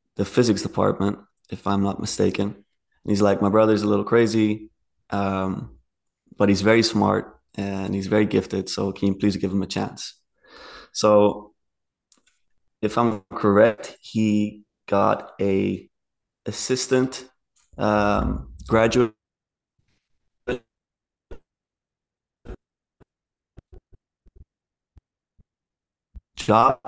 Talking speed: 95 wpm